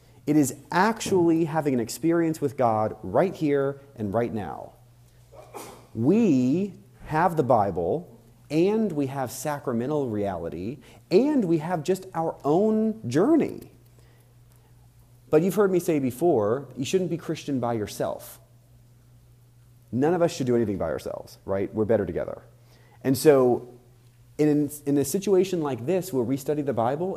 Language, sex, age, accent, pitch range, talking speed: English, male, 30-49, American, 120-175 Hz, 145 wpm